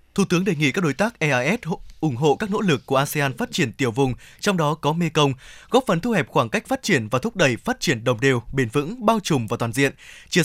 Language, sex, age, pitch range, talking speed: Vietnamese, male, 20-39, 140-195 Hz, 265 wpm